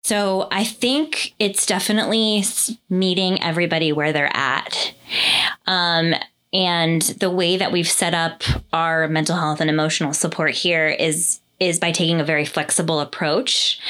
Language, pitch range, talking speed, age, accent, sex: English, 150-185 Hz, 145 wpm, 20-39, American, female